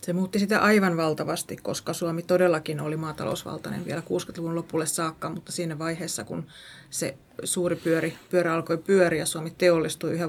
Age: 30-49